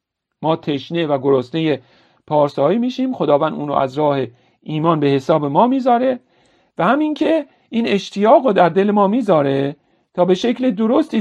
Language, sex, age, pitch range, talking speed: English, male, 50-69, 145-215 Hz, 155 wpm